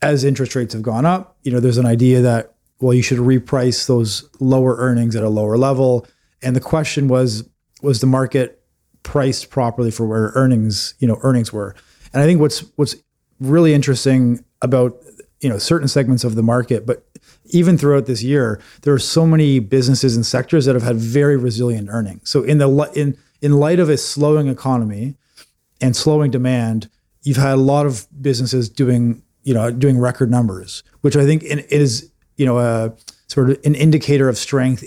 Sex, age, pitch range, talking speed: male, 30-49, 120-145 Hz, 190 wpm